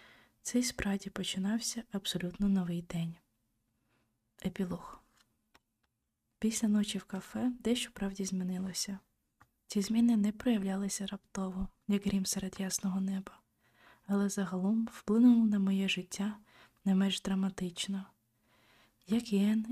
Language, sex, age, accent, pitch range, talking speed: Ukrainian, female, 20-39, native, 190-210 Hz, 105 wpm